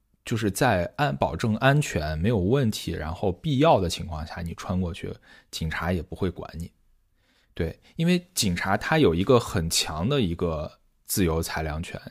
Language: Chinese